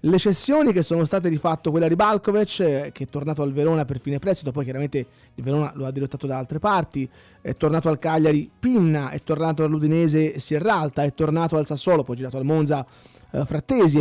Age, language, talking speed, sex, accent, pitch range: 20-39, Italian, 200 wpm, male, native, 140-175 Hz